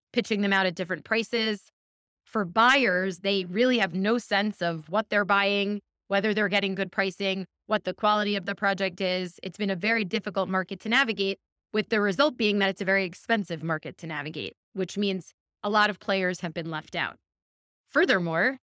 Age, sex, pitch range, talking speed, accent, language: 20-39, female, 185-215 Hz, 190 wpm, American, English